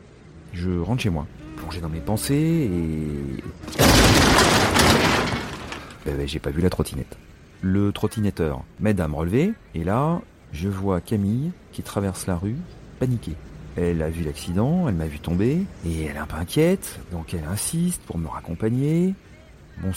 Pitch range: 85-105 Hz